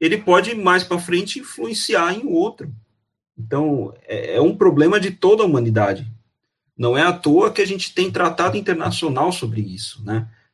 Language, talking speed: Portuguese, 165 wpm